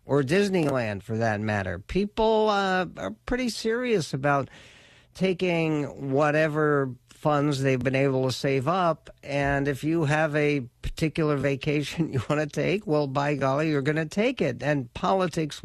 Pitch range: 130-160 Hz